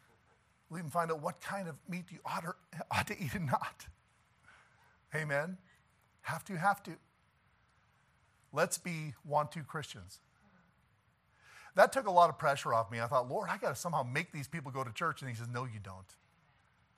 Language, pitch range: English, 120-175 Hz